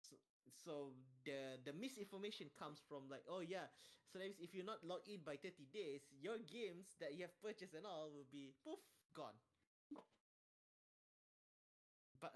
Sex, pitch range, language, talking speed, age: male, 140-185 Hz, English, 160 wpm, 20-39